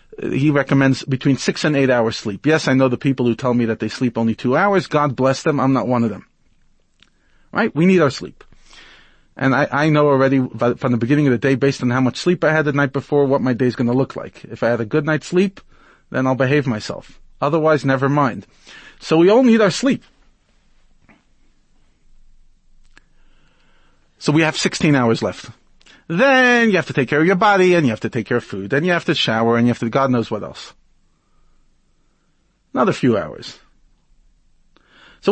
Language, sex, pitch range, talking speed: English, male, 130-180 Hz, 210 wpm